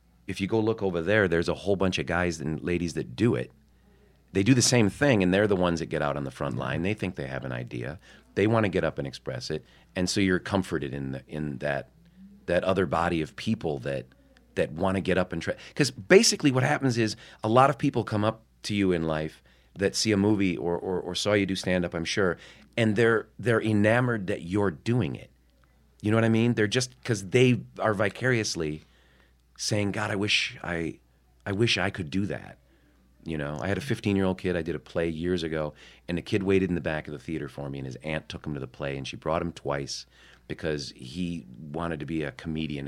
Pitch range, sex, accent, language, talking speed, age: 75-105 Hz, male, American, English, 240 wpm, 40-59